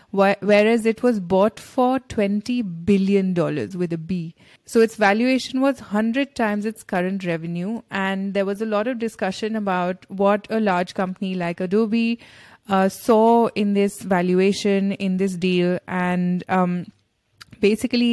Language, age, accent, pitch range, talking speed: English, 20-39, Indian, 185-220 Hz, 145 wpm